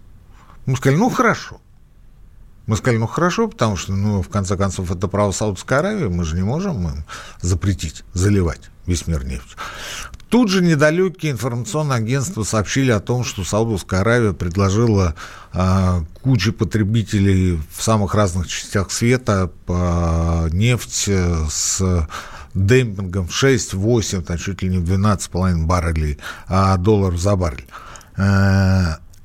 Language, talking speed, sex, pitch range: Russian, 130 wpm, male, 95-145 Hz